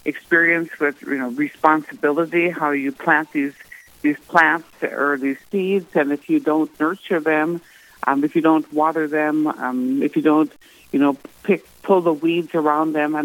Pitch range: 145-165 Hz